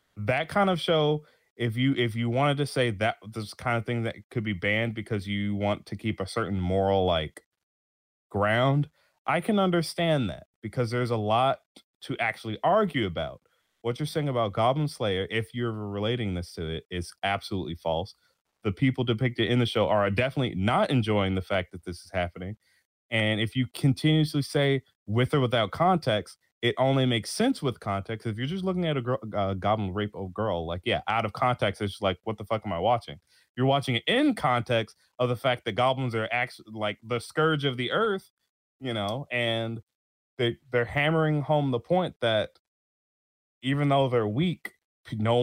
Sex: male